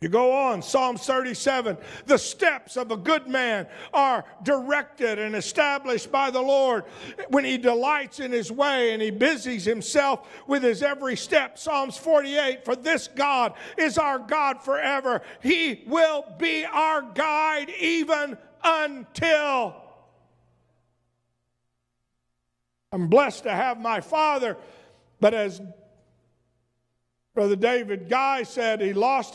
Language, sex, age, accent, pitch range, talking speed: English, male, 50-69, American, 215-295 Hz, 125 wpm